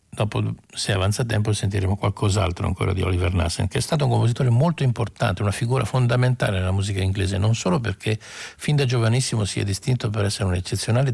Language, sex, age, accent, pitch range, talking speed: Italian, male, 60-79, native, 100-130 Hz, 195 wpm